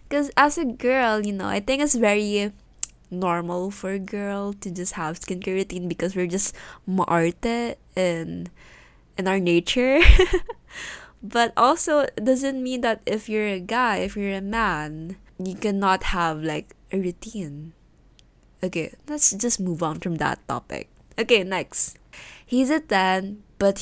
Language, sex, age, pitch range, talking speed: Filipino, female, 20-39, 170-225 Hz, 155 wpm